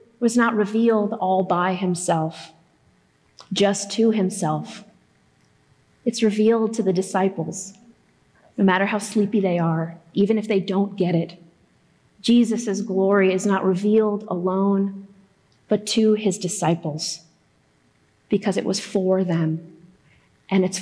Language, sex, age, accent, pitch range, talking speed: English, female, 30-49, American, 175-215 Hz, 125 wpm